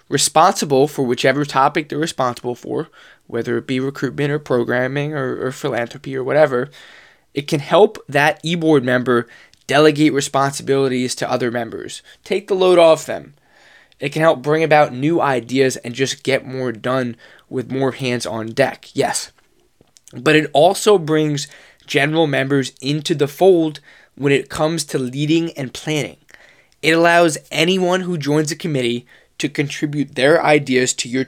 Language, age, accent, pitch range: English, 20-39, American, 130-160 Hz